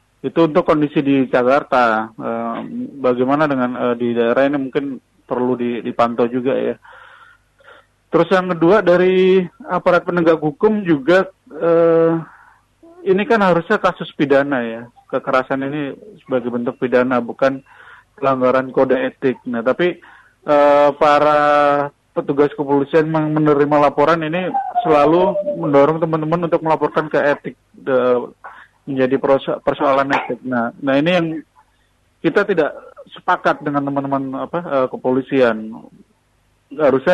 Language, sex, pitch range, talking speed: Indonesian, male, 125-165 Hz, 115 wpm